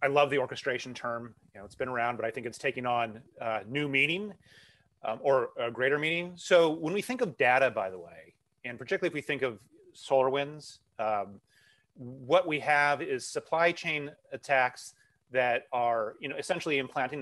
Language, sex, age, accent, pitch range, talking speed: English, male, 30-49, American, 120-145 Hz, 190 wpm